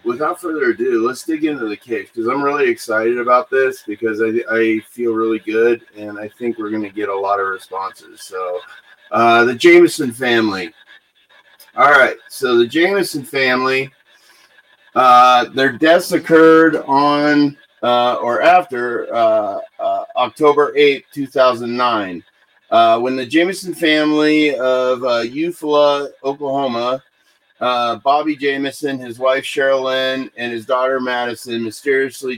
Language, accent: English, American